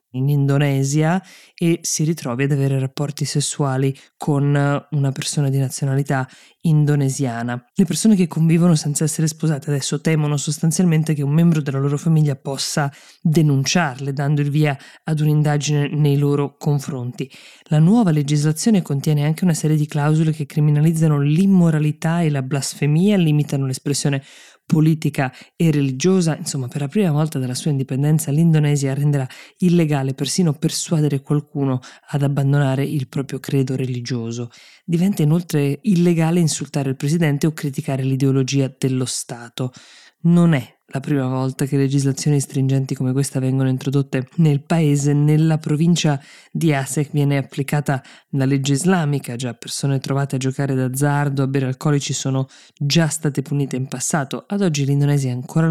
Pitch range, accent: 135-155 Hz, native